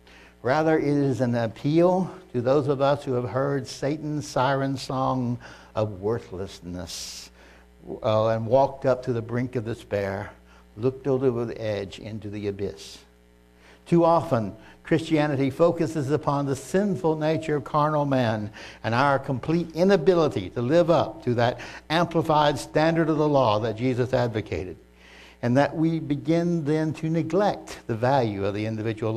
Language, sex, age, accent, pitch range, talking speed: English, male, 60-79, American, 110-155 Hz, 150 wpm